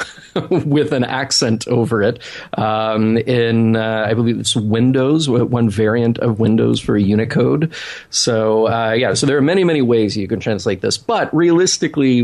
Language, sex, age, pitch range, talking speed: English, male, 40-59, 95-125 Hz, 160 wpm